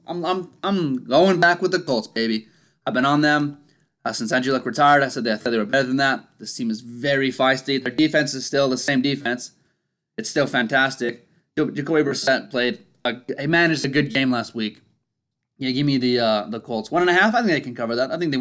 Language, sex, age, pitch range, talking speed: English, male, 20-39, 125-165 Hz, 235 wpm